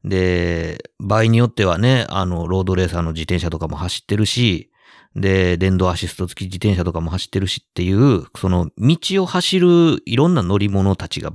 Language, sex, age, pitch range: Japanese, male, 50-69, 90-150 Hz